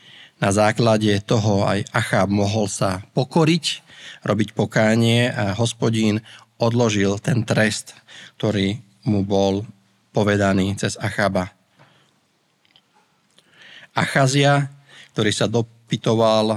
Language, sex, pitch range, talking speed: Slovak, male, 100-125 Hz, 90 wpm